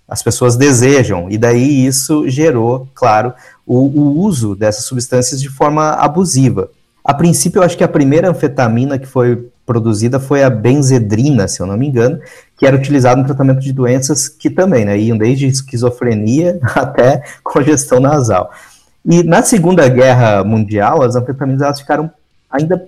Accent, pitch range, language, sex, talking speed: Brazilian, 120-155 Hz, Portuguese, male, 160 wpm